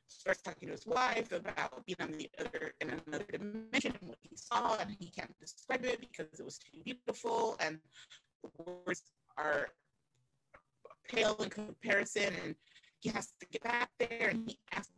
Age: 30-49